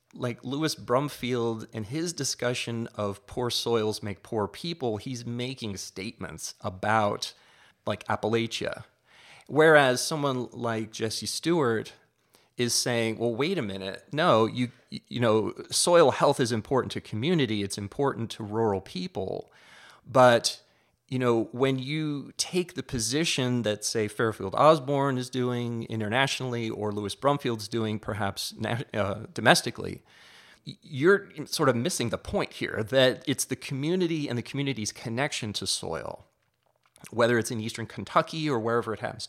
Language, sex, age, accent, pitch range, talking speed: English, male, 30-49, American, 110-135 Hz, 140 wpm